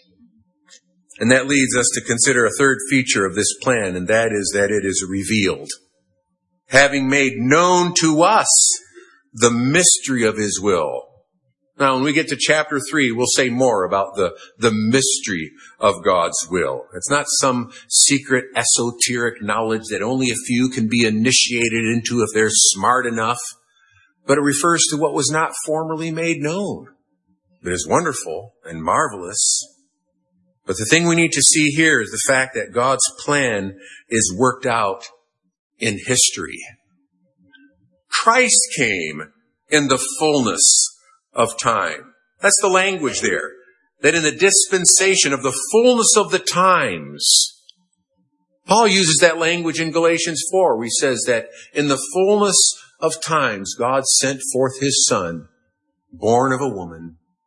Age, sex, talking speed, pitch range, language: 50-69, male, 150 wpm, 110-165 Hz, English